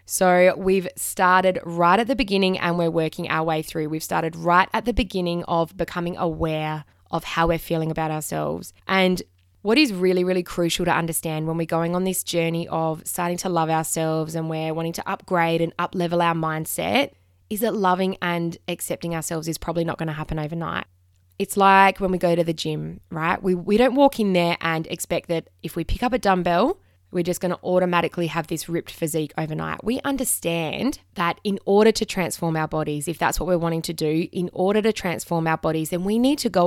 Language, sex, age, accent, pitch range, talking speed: English, female, 20-39, Australian, 160-185 Hz, 215 wpm